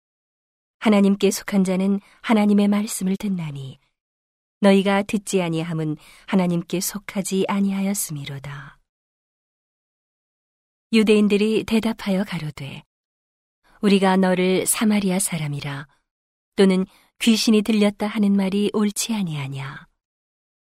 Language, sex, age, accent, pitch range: Korean, female, 40-59, native, 160-205 Hz